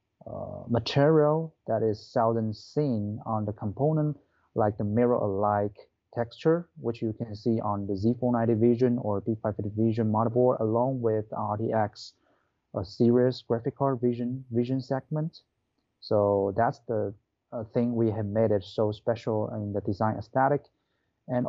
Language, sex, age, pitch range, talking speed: English, male, 30-49, 110-125 Hz, 145 wpm